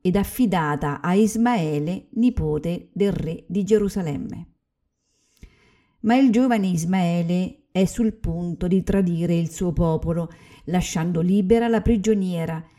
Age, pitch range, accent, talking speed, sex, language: 50-69, 165-210 Hz, native, 115 wpm, female, Italian